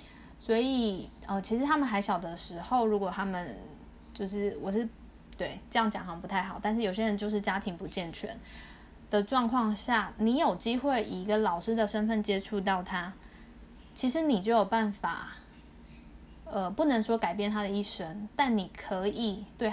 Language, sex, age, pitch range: Chinese, female, 20-39, 185-220 Hz